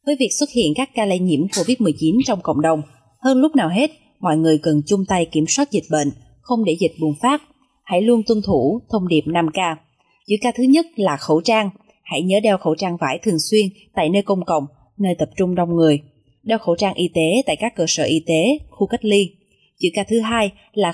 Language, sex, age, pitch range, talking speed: Vietnamese, female, 20-39, 165-235 Hz, 230 wpm